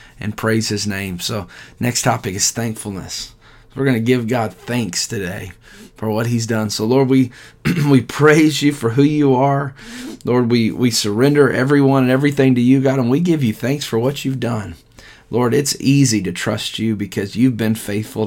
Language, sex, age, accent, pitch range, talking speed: English, male, 30-49, American, 110-135 Hz, 195 wpm